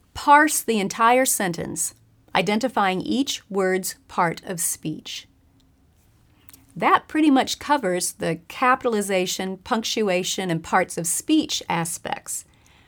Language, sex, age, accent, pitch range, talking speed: English, female, 40-59, American, 170-255 Hz, 105 wpm